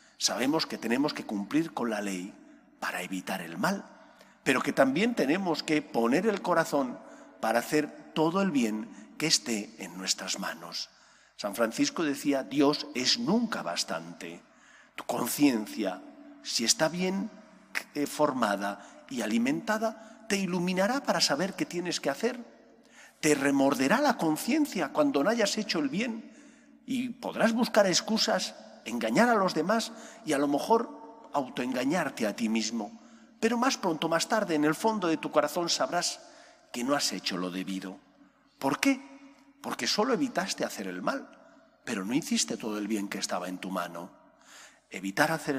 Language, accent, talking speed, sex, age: English, Spanish, 155 wpm, male, 50-69